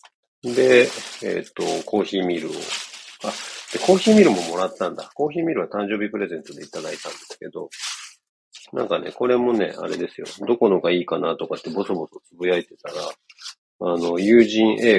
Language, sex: Japanese, male